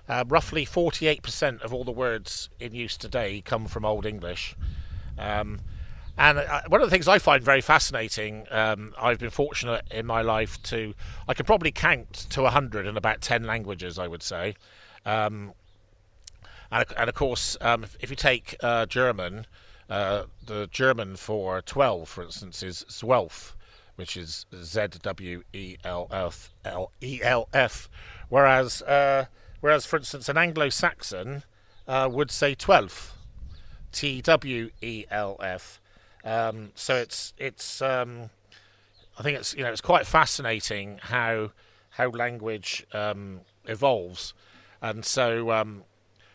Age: 50-69